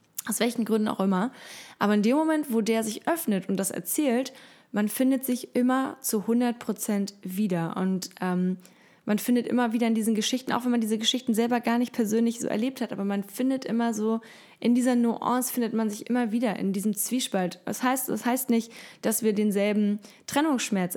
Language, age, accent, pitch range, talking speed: German, 10-29, German, 200-245 Hz, 195 wpm